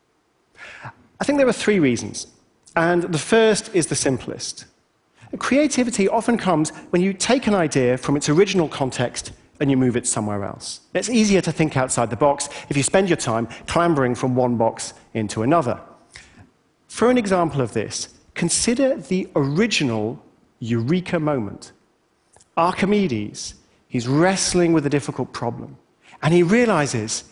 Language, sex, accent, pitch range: Chinese, male, British, 130-195 Hz